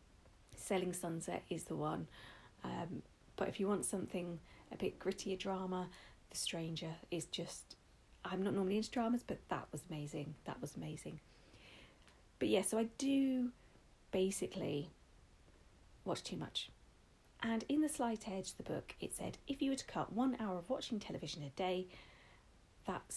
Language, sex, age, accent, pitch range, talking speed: English, female, 40-59, British, 165-220 Hz, 160 wpm